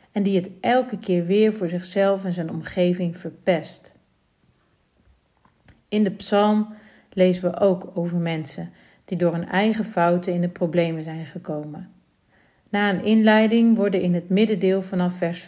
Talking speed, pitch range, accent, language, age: 150 wpm, 175-205 Hz, Dutch, Dutch, 40-59